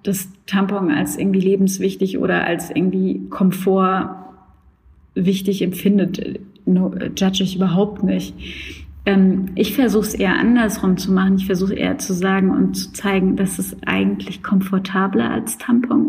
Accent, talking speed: German, 140 wpm